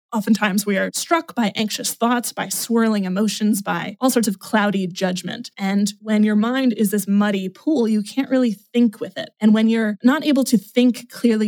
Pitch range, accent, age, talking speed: 200-245 Hz, American, 20-39, 200 wpm